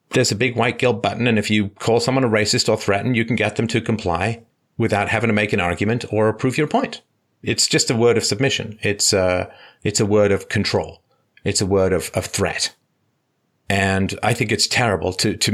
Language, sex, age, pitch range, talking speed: English, male, 30-49, 95-115 Hz, 220 wpm